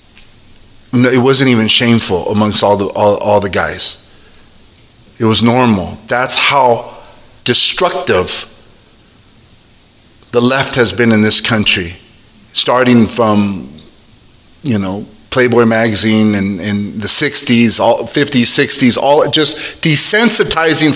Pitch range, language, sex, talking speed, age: 110-140 Hz, English, male, 115 wpm, 30-49